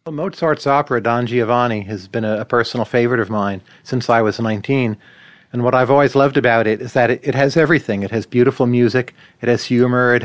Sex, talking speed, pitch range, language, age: male, 220 wpm, 120-140 Hz, English, 40-59